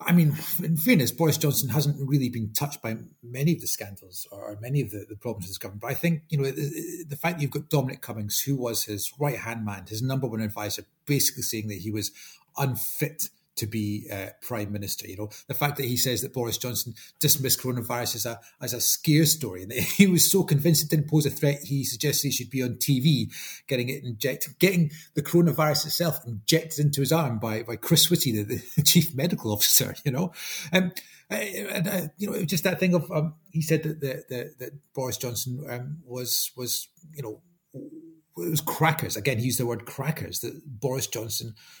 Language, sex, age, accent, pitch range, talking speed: English, male, 30-49, British, 120-155 Hz, 220 wpm